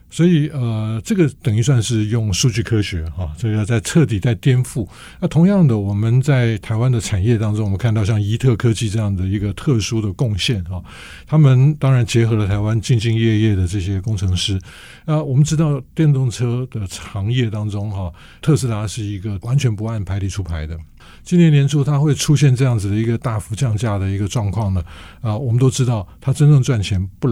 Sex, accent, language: male, American, Chinese